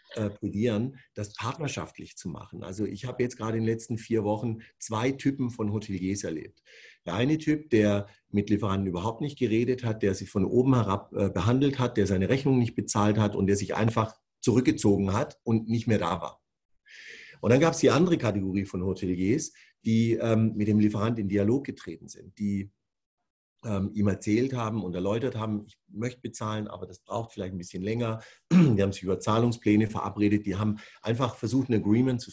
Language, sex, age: German, male, 50-69